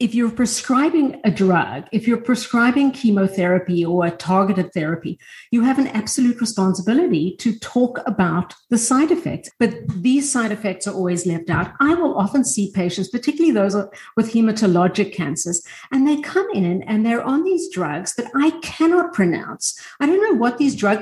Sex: female